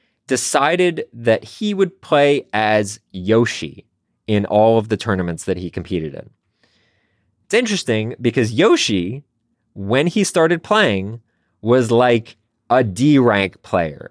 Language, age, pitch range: English, 20-39, 95-125 Hz